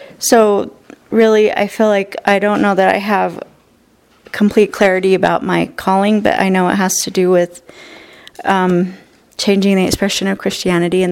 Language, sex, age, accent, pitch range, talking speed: English, female, 40-59, American, 195-235 Hz, 165 wpm